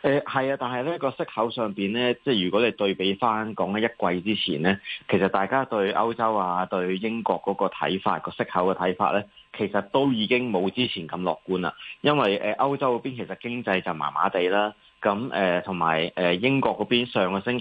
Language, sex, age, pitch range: Chinese, male, 20-39, 95-120 Hz